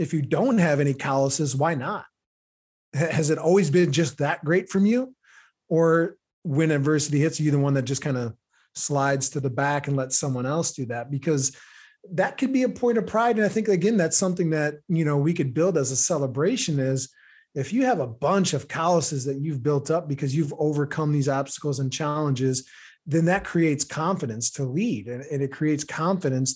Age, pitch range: 30-49, 140-175 Hz